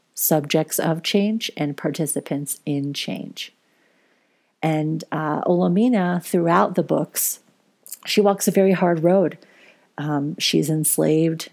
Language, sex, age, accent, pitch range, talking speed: English, female, 40-59, American, 150-175 Hz, 115 wpm